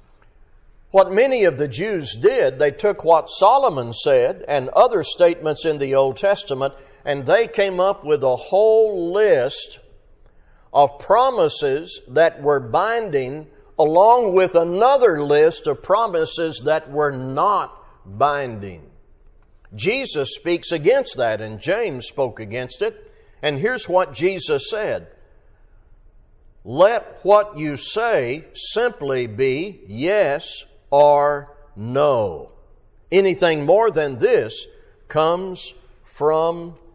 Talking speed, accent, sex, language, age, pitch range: 115 wpm, American, male, English, 60-79, 130-210 Hz